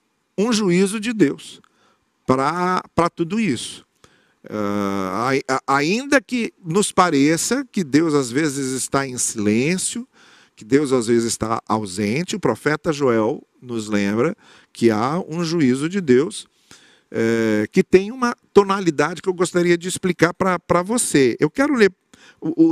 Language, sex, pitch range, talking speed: Portuguese, male, 120-170 Hz, 135 wpm